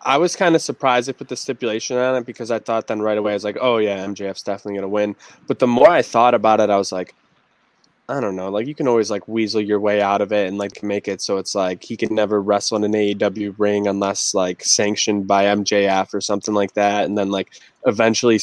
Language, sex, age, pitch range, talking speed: English, male, 10-29, 95-110 Hz, 255 wpm